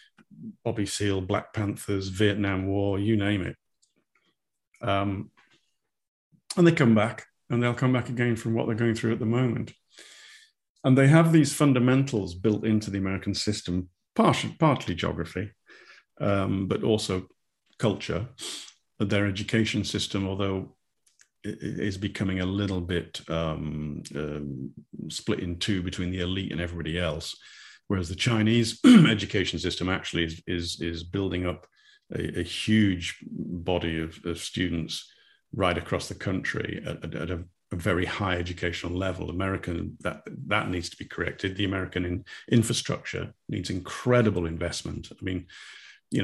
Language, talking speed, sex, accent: English, 145 wpm, male, British